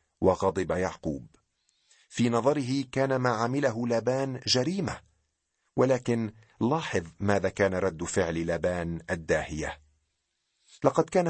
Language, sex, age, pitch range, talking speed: Arabic, male, 40-59, 85-125 Hz, 100 wpm